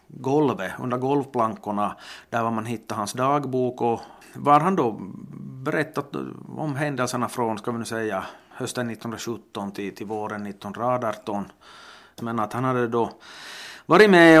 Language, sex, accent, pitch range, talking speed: Swedish, male, Finnish, 115-140 Hz, 135 wpm